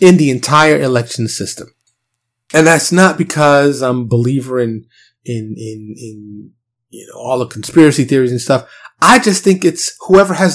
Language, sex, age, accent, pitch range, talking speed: English, male, 30-49, American, 120-155 Hz, 175 wpm